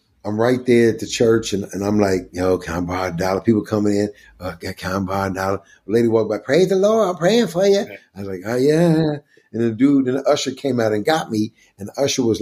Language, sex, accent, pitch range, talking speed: English, male, American, 100-130 Hz, 260 wpm